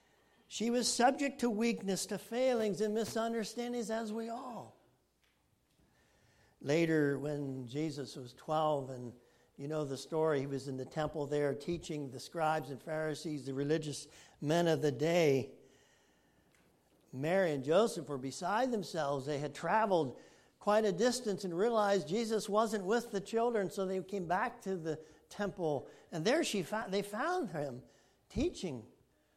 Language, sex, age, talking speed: English, male, 60-79, 145 wpm